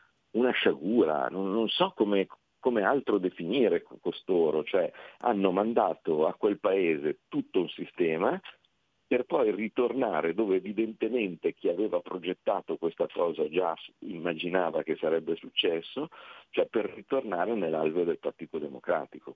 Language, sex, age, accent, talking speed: Italian, male, 40-59, native, 125 wpm